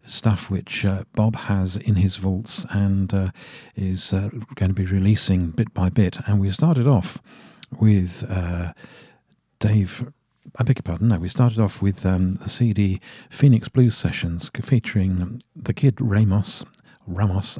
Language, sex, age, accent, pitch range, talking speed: English, male, 50-69, British, 95-115 Hz, 160 wpm